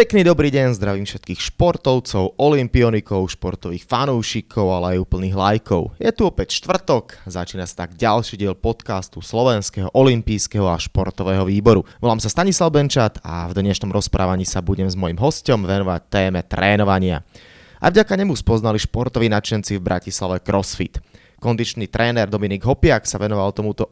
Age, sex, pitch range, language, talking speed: 20-39, male, 95-120 Hz, Slovak, 150 wpm